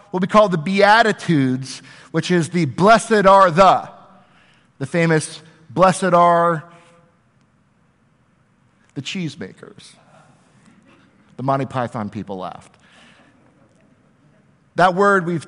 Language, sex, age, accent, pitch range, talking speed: English, male, 50-69, American, 135-175 Hz, 95 wpm